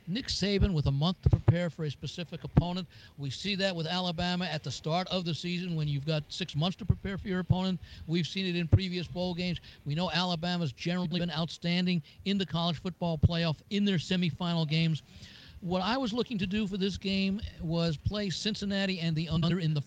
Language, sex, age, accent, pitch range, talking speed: English, male, 60-79, American, 155-185 Hz, 215 wpm